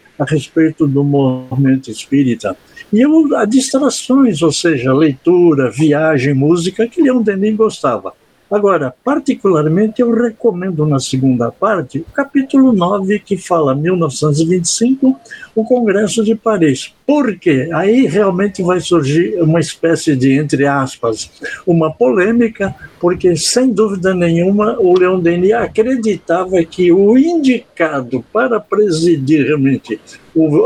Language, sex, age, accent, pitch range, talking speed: Portuguese, male, 60-79, Brazilian, 155-220 Hz, 120 wpm